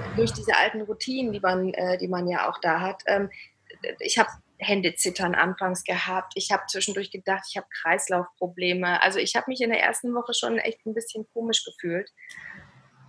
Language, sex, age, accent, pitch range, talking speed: German, female, 20-39, German, 185-230 Hz, 190 wpm